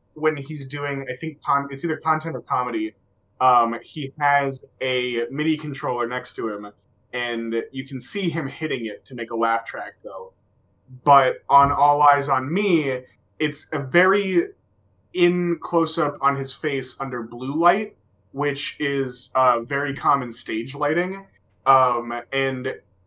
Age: 20-39